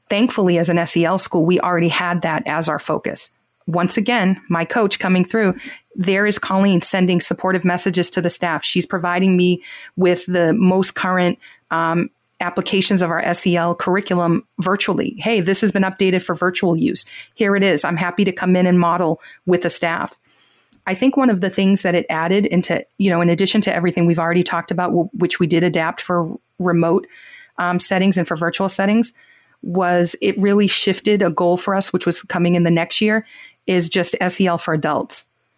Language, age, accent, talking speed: English, 30-49, American, 190 wpm